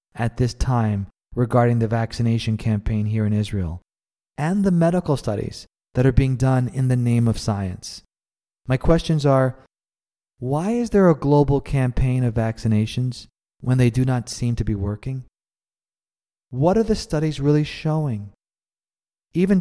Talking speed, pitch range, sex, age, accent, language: 150 wpm, 110-145 Hz, male, 30-49, American, English